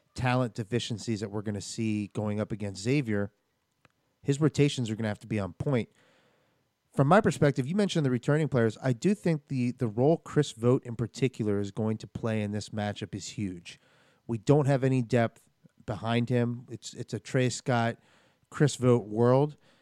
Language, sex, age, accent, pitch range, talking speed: English, male, 30-49, American, 110-140 Hz, 190 wpm